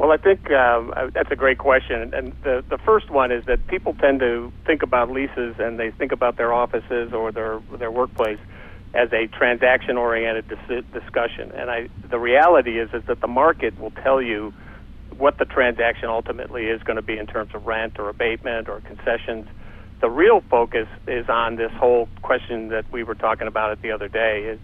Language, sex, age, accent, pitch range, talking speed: English, male, 50-69, American, 105-125 Hz, 200 wpm